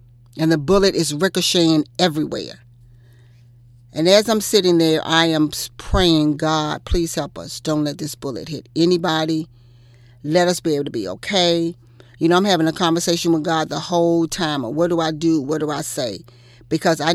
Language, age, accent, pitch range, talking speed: English, 40-59, American, 120-170 Hz, 185 wpm